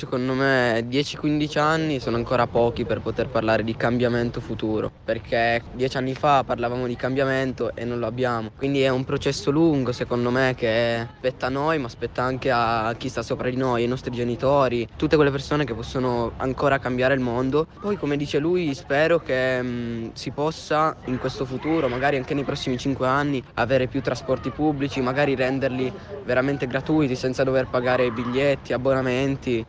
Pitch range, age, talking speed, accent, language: 125-145 Hz, 20-39, 175 wpm, native, Italian